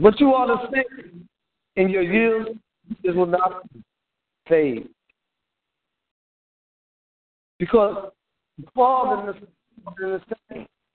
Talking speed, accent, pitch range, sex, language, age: 110 wpm, American, 175-235 Hz, male, English, 60-79